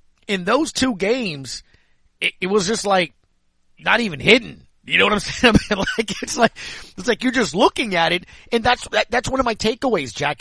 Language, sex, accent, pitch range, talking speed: English, male, American, 150-215 Hz, 200 wpm